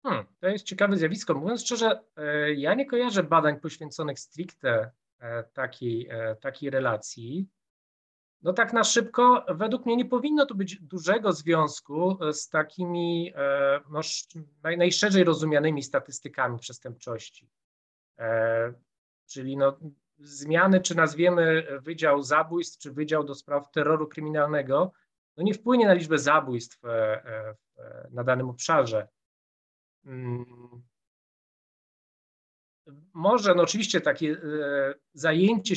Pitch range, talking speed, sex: 130-170 Hz, 95 wpm, male